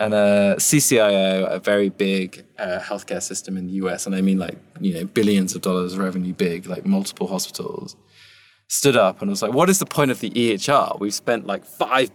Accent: British